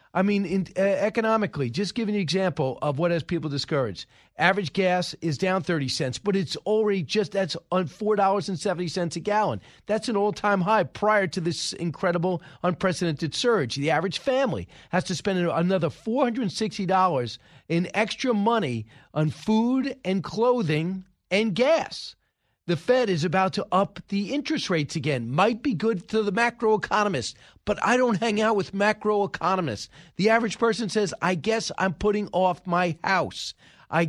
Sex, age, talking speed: male, 40-59, 160 wpm